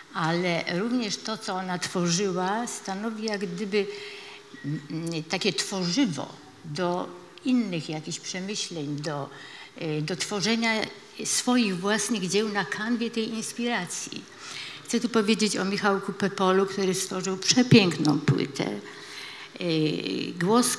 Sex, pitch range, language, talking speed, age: female, 165-215 Hz, Polish, 105 wpm, 50-69